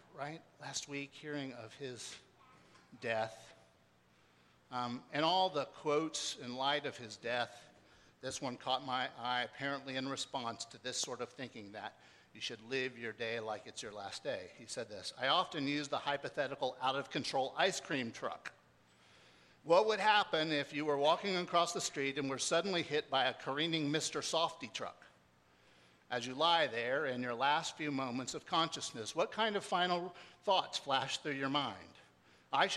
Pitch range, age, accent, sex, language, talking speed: 120-170 Hz, 50-69, American, male, English, 175 wpm